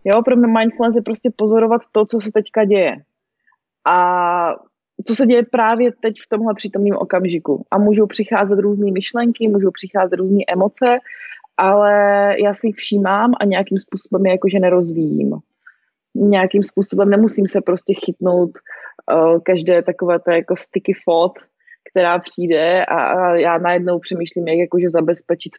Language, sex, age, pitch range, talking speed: Slovak, female, 20-39, 175-215 Hz, 145 wpm